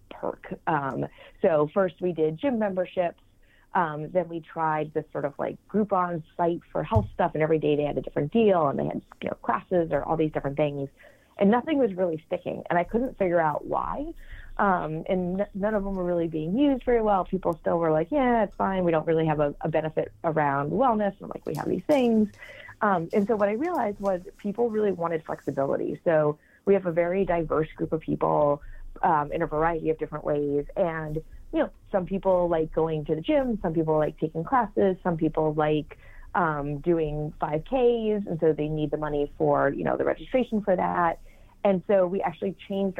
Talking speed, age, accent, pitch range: 210 wpm, 30-49, American, 155-195 Hz